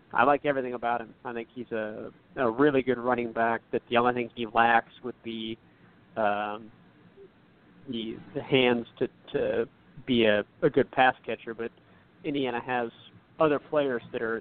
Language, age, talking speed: English, 40-59, 170 wpm